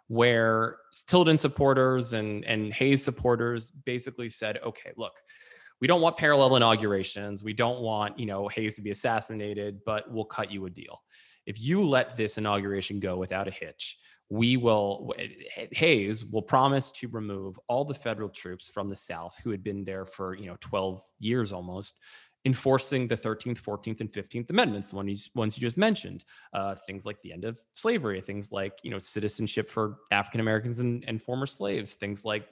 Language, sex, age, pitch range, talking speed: English, male, 20-39, 100-125 Hz, 175 wpm